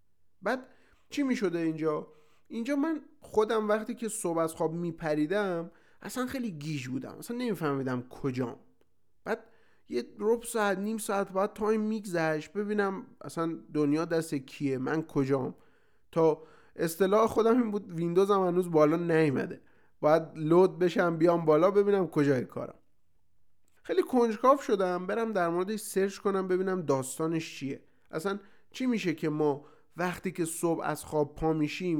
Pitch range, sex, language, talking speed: 150-220 Hz, male, Persian, 145 wpm